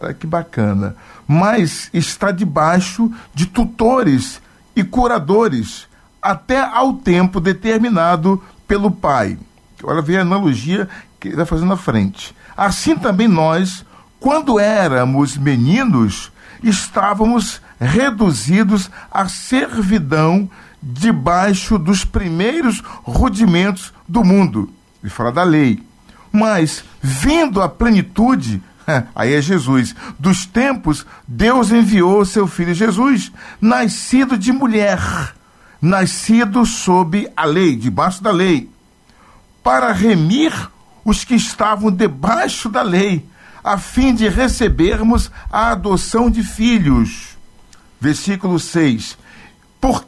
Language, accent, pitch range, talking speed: Portuguese, Brazilian, 165-225 Hz, 105 wpm